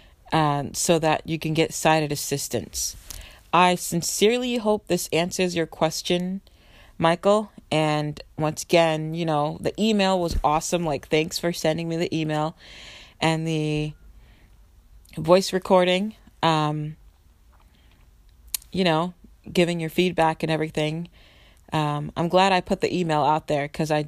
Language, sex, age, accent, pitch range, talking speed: English, female, 30-49, American, 150-170 Hz, 135 wpm